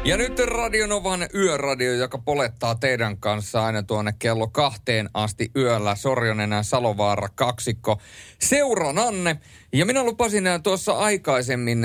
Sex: male